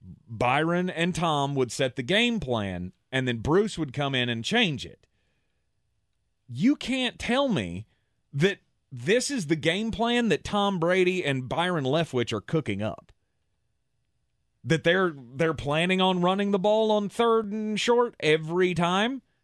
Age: 30-49